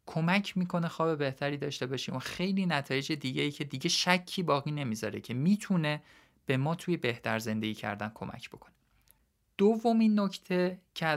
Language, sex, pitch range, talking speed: Persian, male, 120-170 Hz, 150 wpm